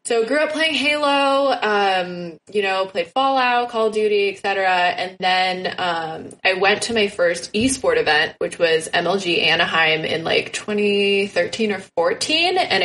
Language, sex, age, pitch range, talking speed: English, female, 20-39, 175-225 Hz, 165 wpm